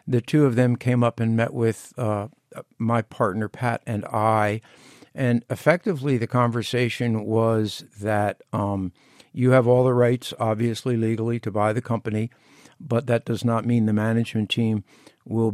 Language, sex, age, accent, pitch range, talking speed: English, male, 60-79, American, 110-125 Hz, 160 wpm